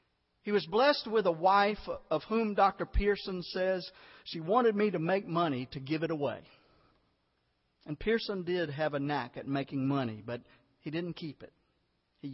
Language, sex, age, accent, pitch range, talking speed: English, male, 50-69, American, 125-175 Hz, 175 wpm